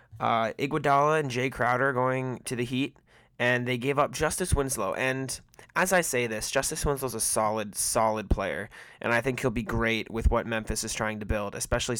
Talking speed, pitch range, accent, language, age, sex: 200 wpm, 115-135 Hz, American, English, 20-39, male